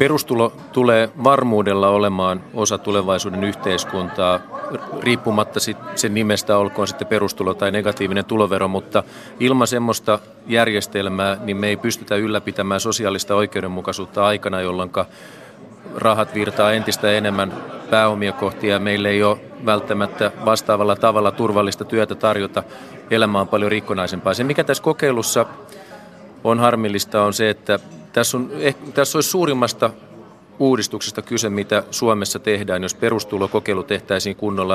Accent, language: native, Finnish